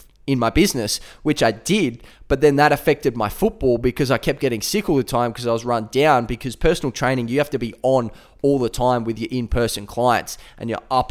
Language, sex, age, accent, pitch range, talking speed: English, male, 20-39, Australian, 120-135 Hz, 230 wpm